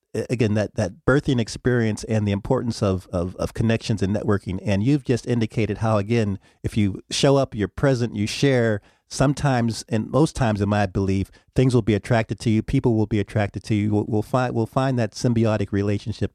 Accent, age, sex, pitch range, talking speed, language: American, 40-59, male, 95-115 Hz, 200 wpm, English